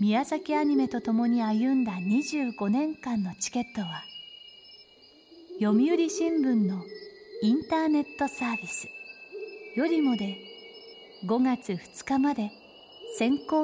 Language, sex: Japanese, female